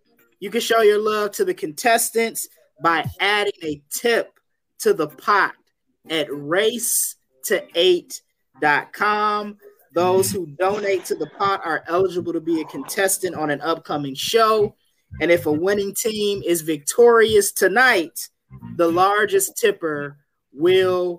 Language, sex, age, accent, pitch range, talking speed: English, male, 20-39, American, 165-220 Hz, 125 wpm